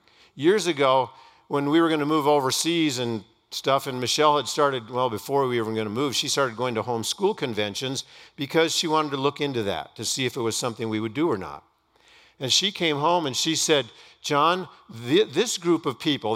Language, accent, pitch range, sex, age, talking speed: English, American, 130-175 Hz, male, 50-69, 220 wpm